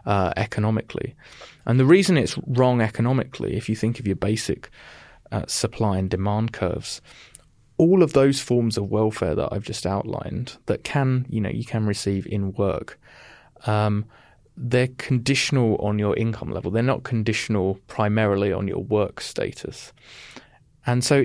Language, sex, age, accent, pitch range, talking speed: English, male, 20-39, British, 100-125 Hz, 155 wpm